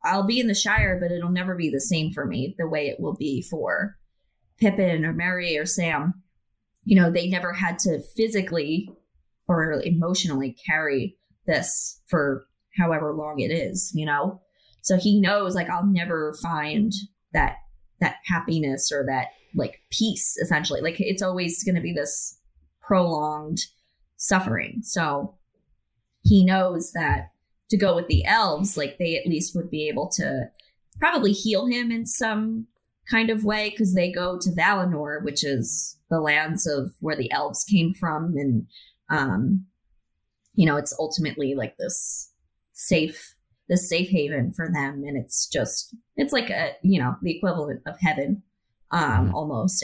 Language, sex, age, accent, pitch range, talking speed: English, female, 20-39, American, 150-190 Hz, 160 wpm